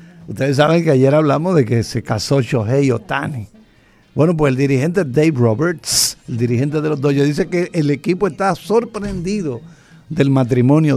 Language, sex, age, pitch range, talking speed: Spanish, male, 50-69, 135-175 Hz, 175 wpm